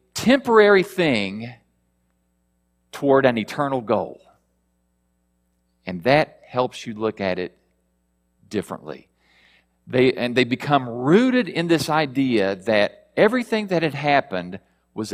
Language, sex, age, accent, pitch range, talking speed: English, male, 50-69, American, 90-155 Hz, 110 wpm